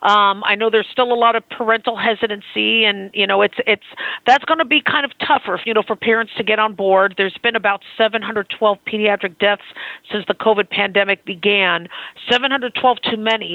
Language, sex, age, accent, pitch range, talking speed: English, female, 40-59, American, 200-230 Hz, 195 wpm